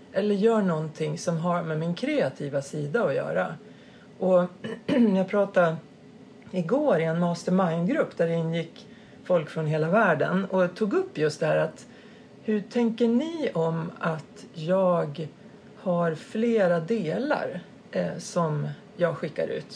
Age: 40-59